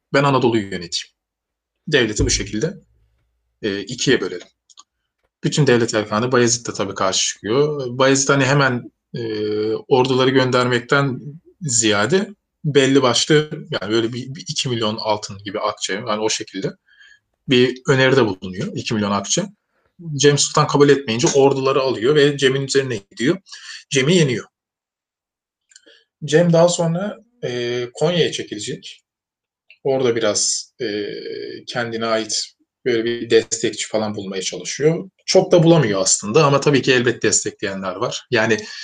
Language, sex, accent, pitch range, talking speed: Turkish, male, native, 110-150 Hz, 125 wpm